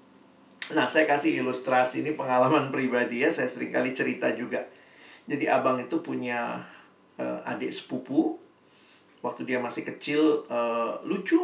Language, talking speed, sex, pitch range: Indonesian, 130 wpm, male, 125-190 Hz